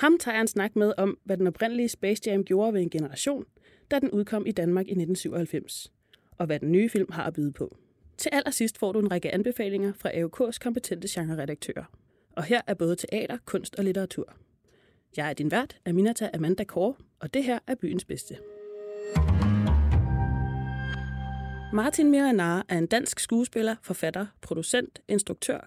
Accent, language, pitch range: native, Danish, 170-230 Hz